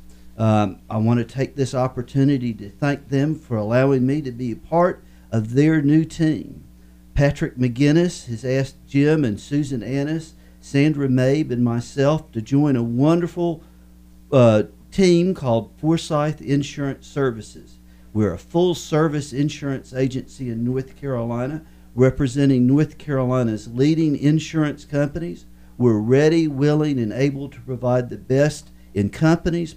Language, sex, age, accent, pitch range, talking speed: English, male, 50-69, American, 115-155 Hz, 140 wpm